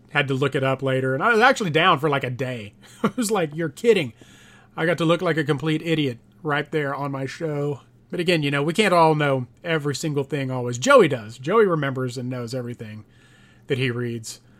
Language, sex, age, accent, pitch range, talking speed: English, male, 30-49, American, 130-165 Hz, 225 wpm